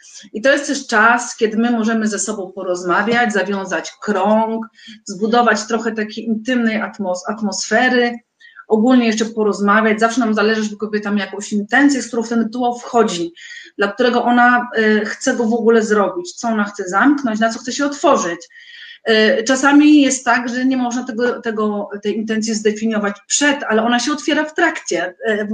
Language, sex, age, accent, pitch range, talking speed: Polish, female, 30-49, native, 200-235 Hz, 160 wpm